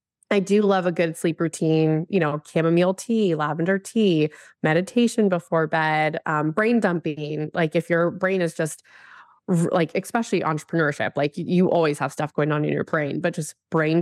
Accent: American